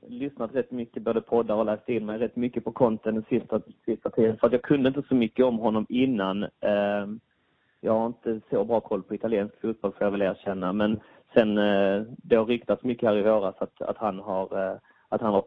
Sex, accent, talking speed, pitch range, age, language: male, Swedish, 225 wpm, 105-120 Hz, 30-49, English